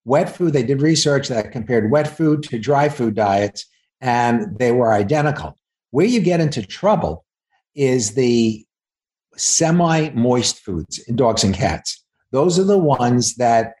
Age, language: 50-69, English